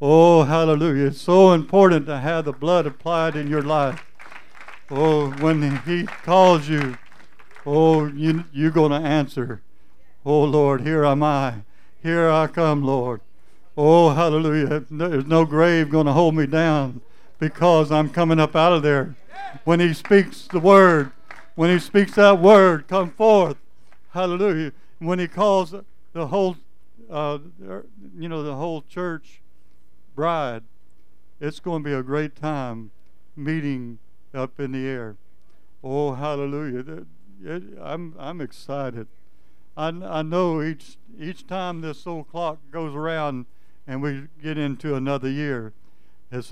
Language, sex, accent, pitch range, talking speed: English, male, American, 135-165 Hz, 140 wpm